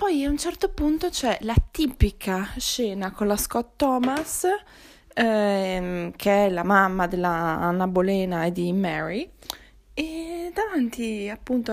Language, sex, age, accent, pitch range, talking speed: Italian, female, 20-39, native, 200-265 Hz, 135 wpm